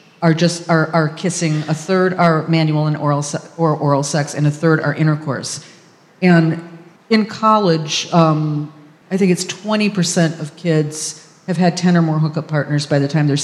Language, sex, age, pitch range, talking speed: English, female, 50-69, 160-200 Hz, 185 wpm